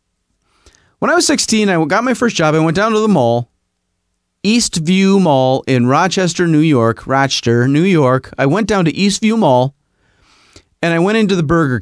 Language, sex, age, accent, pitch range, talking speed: English, male, 30-49, American, 115-185 Hz, 185 wpm